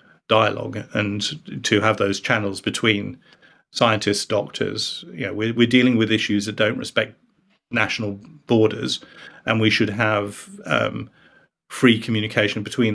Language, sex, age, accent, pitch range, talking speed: English, male, 40-59, British, 105-120 Hz, 135 wpm